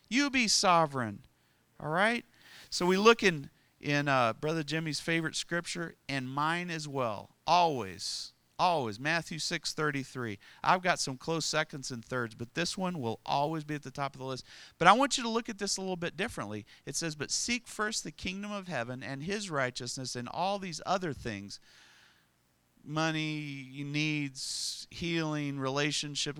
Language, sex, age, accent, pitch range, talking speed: English, male, 40-59, American, 130-180 Hz, 170 wpm